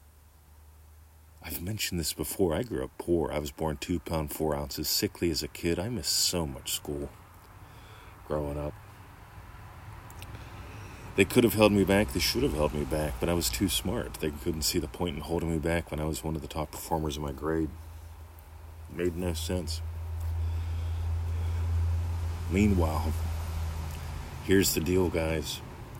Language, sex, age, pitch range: English, male, 40-59, 75-90 Hz